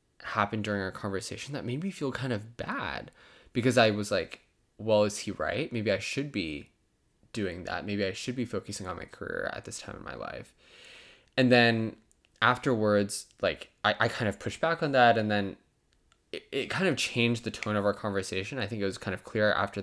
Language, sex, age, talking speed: English, male, 10-29, 215 wpm